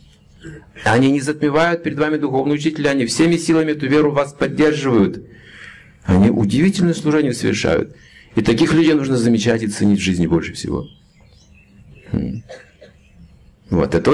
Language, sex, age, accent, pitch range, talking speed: Russian, male, 50-69, native, 100-145 Hz, 135 wpm